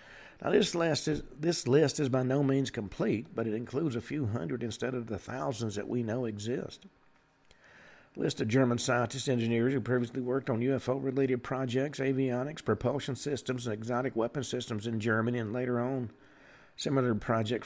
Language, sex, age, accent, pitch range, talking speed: English, male, 50-69, American, 115-140 Hz, 175 wpm